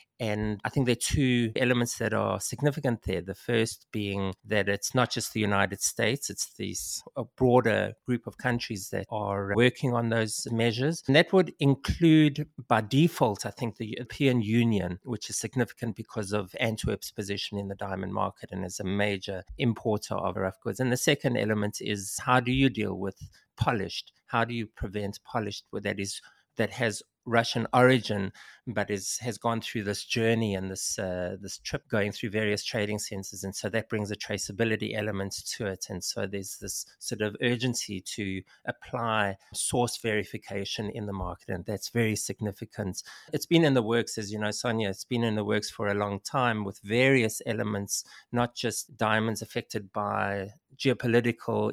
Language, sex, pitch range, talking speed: English, male, 100-120 Hz, 180 wpm